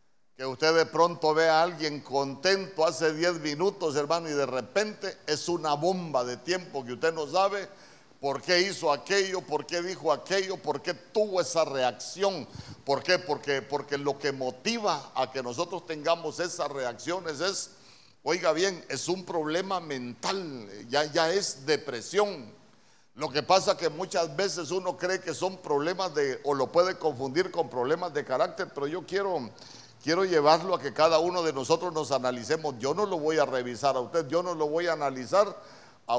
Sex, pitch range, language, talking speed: male, 135-180 Hz, Spanish, 180 wpm